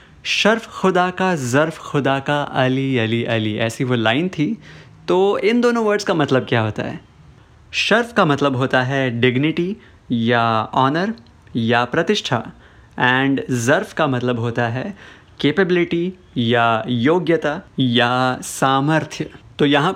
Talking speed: 135 wpm